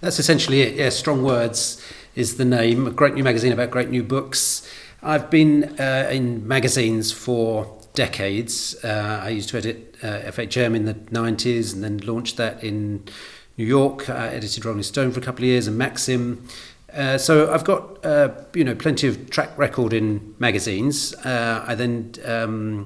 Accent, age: British, 40-59